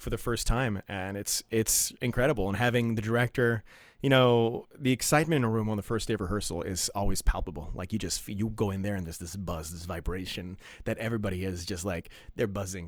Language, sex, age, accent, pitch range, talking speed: English, male, 30-49, American, 100-125 Hz, 225 wpm